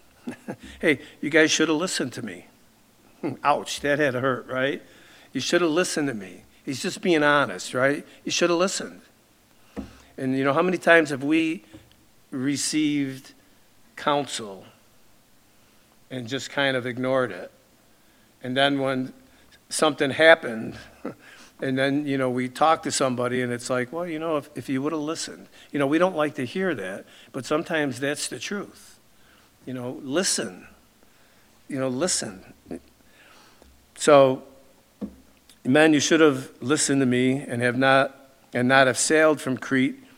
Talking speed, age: 160 wpm, 60-79